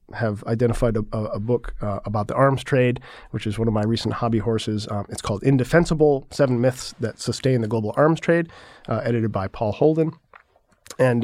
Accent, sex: American, male